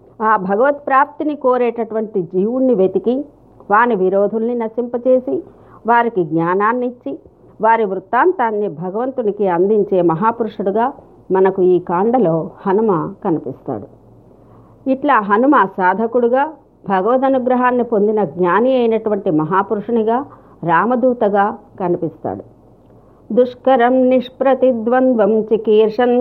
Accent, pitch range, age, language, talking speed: native, 200-255 Hz, 50-69, Telugu, 80 wpm